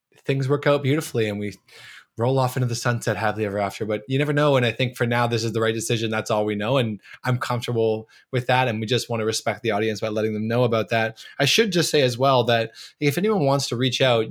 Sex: male